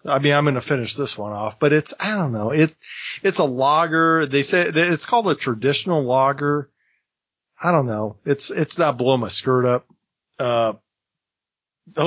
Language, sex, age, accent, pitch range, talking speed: English, male, 40-59, American, 130-165 Hz, 180 wpm